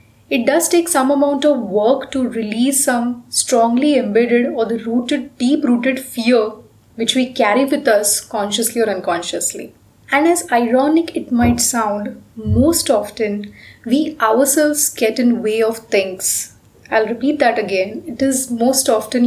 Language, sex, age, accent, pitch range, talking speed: English, female, 20-39, Indian, 220-280 Hz, 150 wpm